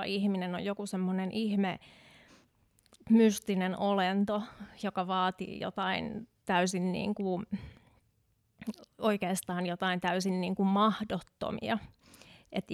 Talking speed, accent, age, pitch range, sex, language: 95 wpm, native, 20-39, 185-210 Hz, female, Finnish